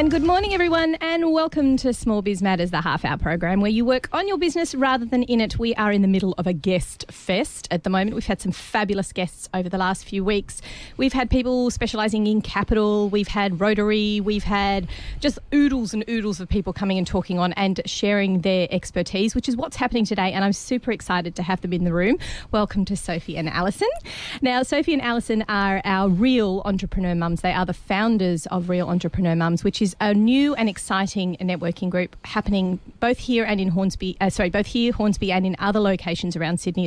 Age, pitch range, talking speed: 30-49, 180-220 Hz, 215 wpm